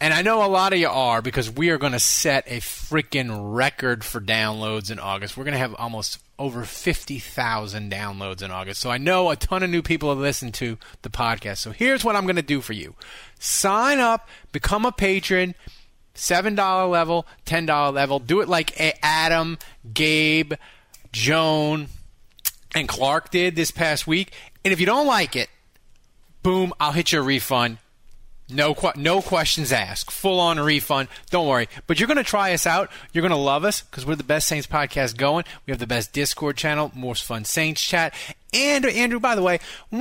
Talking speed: 195 wpm